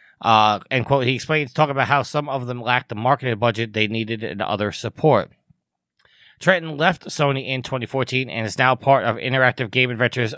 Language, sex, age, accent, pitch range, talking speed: English, male, 30-49, American, 120-150 Hz, 190 wpm